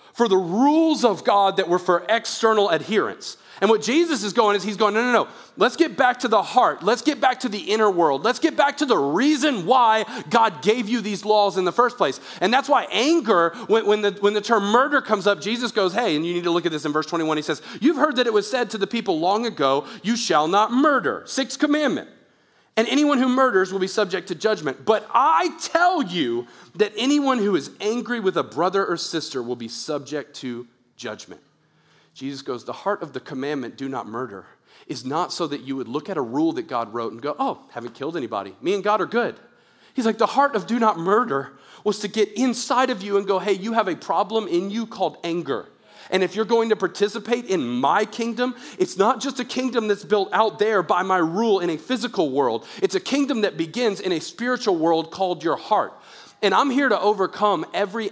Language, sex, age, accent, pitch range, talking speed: English, male, 40-59, American, 170-245 Hz, 230 wpm